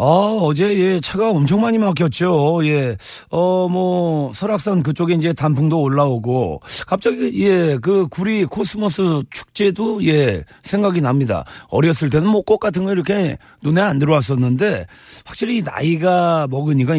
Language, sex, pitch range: Korean, male, 150-205 Hz